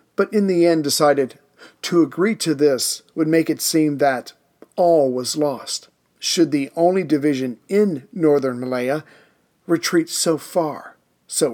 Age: 40-59